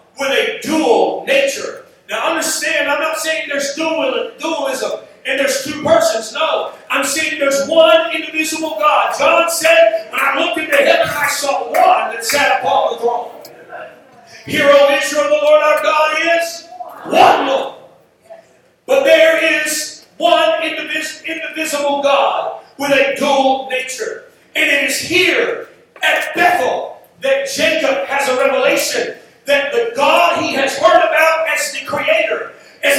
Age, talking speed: 40-59, 150 wpm